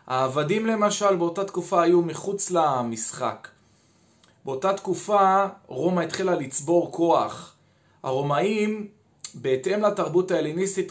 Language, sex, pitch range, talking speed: Hebrew, male, 145-185 Hz, 95 wpm